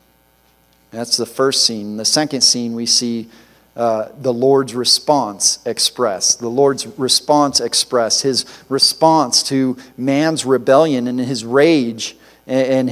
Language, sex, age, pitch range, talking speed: English, male, 40-59, 115-165 Hz, 130 wpm